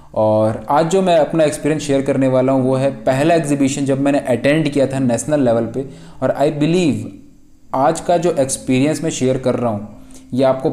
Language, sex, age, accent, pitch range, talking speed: Hindi, male, 20-39, native, 120-145 Hz, 200 wpm